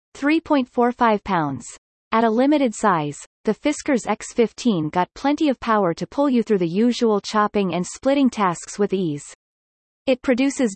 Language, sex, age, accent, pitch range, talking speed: English, female, 30-49, American, 180-250 Hz, 145 wpm